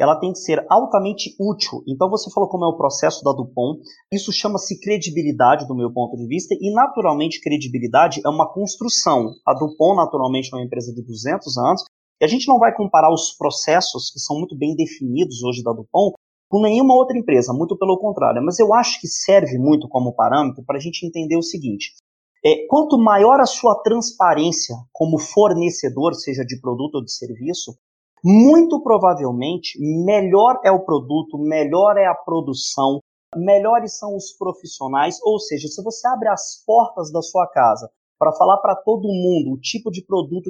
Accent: Brazilian